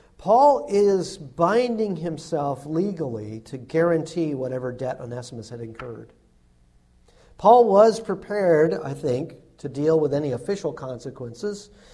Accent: American